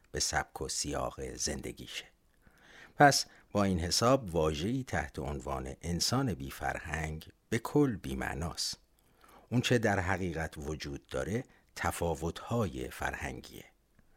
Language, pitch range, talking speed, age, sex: Persian, 75-115 Hz, 115 wpm, 50-69, male